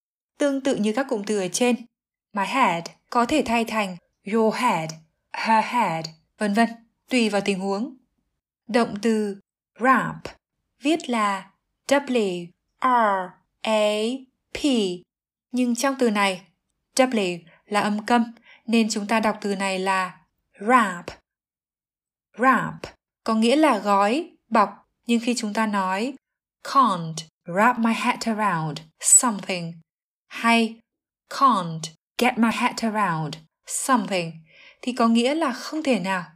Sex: female